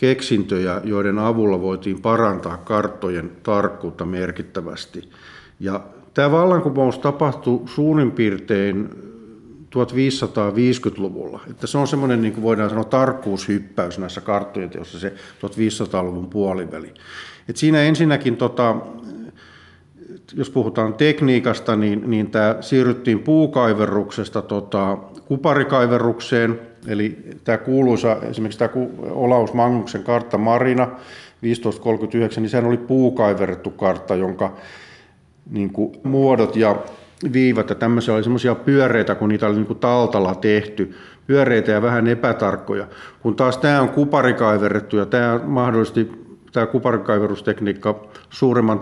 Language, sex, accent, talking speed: Finnish, male, native, 105 wpm